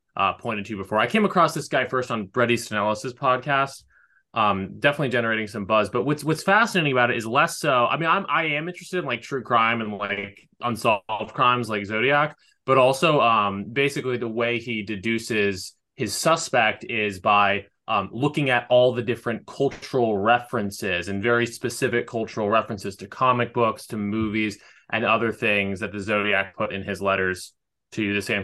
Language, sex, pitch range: English, male, 100-125 Hz